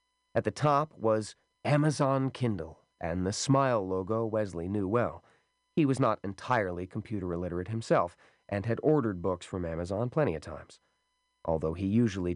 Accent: American